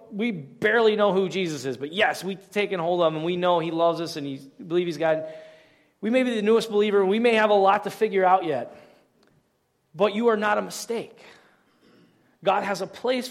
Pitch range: 160-220 Hz